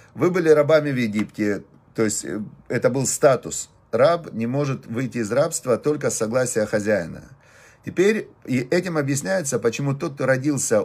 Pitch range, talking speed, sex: 115-145 Hz, 155 wpm, male